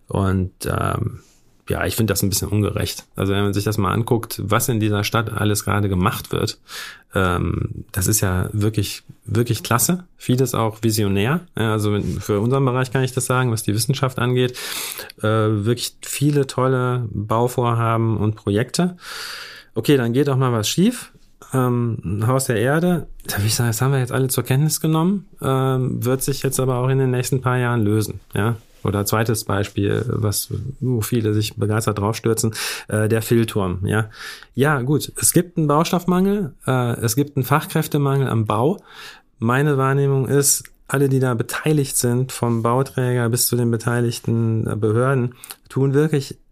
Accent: German